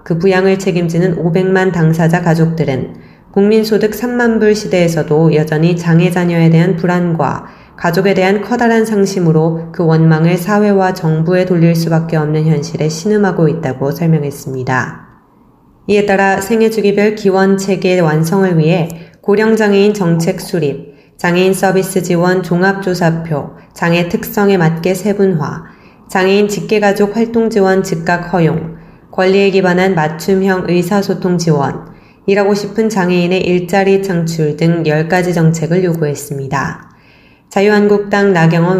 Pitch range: 160-195 Hz